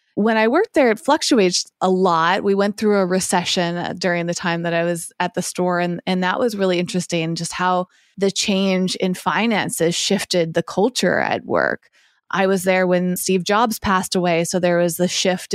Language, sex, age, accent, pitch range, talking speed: English, female, 20-39, American, 170-195 Hz, 200 wpm